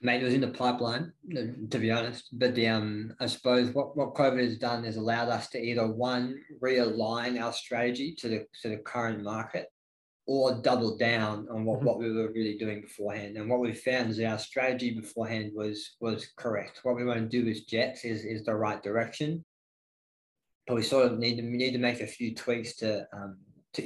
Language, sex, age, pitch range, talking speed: English, male, 20-39, 110-125 Hz, 210 wpm